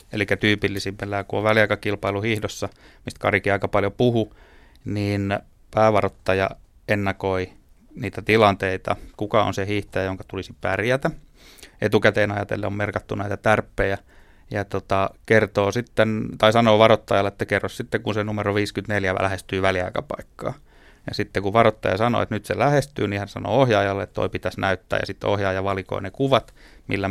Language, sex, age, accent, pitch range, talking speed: Finnish, male, 30-49, native, 95-110 Hz, 155 wpm